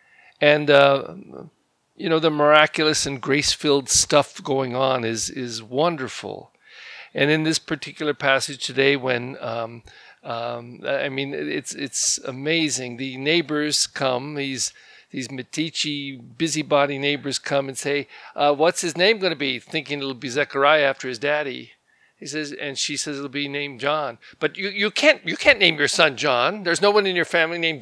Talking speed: 170 wpm